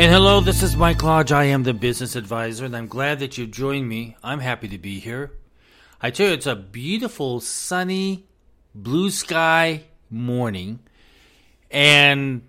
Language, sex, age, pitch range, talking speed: English, male, 40-59, 115-160 Hz, 165 wpm